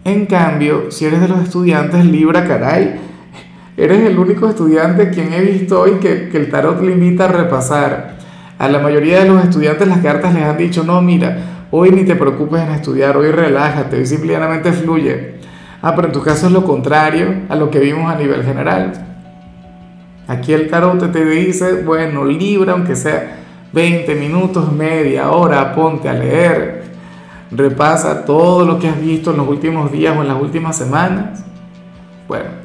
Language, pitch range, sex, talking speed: Spanish, 145-180 Hz, male, 175 wpm